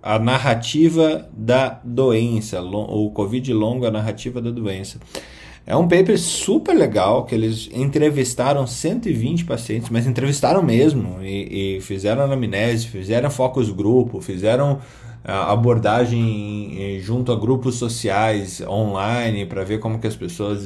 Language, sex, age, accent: Portuguese, male, 20-39, Brazilian